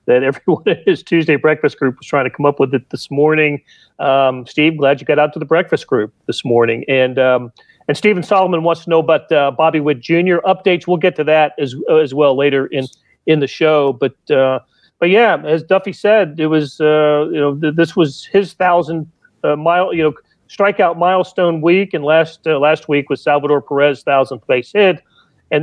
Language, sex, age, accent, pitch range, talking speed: English, male, 40-59, American, 140-170 Hz, 215 wpm